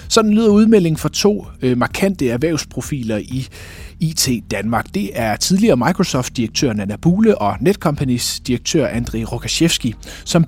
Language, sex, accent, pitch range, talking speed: Danish, male, native, 120-170 Hz, 130 wpm